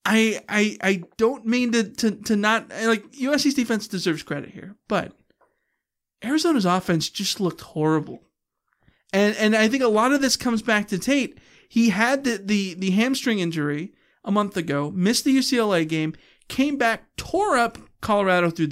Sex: male